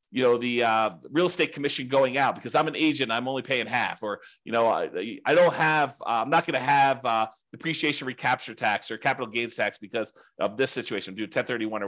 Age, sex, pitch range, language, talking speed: 40-59, male, 120-155 Hz, English, 225 wpm